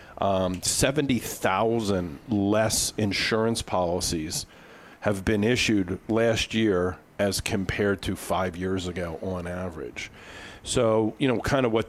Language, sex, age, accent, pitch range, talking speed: English, male, 50-69, American, 95-115 Hz, 120 wpm